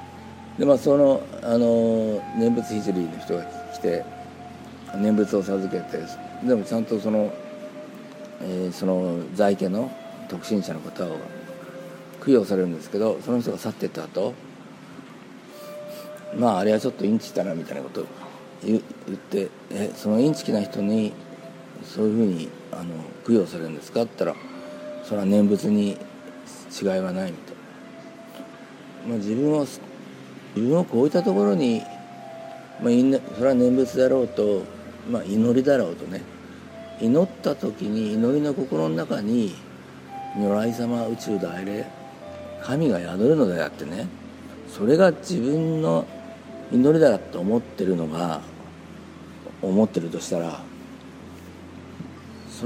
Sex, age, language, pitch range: male, 50-69, Japanese, 90-135 Hz